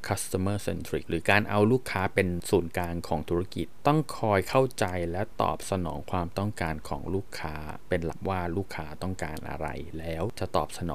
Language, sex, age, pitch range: Thai, male, 20-39, 85-115 Hz